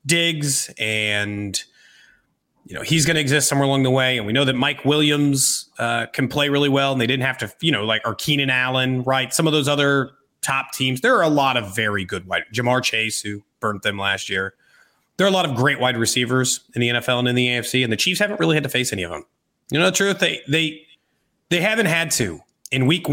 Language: English